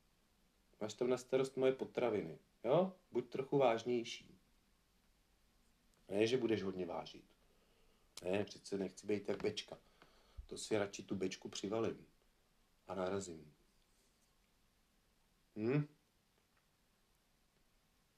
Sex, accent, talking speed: male, native, 100 wpm